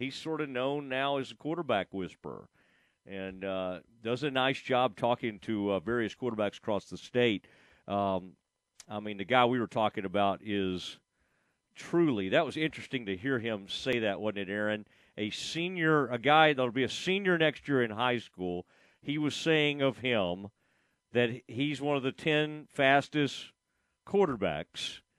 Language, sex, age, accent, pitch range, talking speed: English, male, 40-59, American, 105-160 Hz, 170 wpm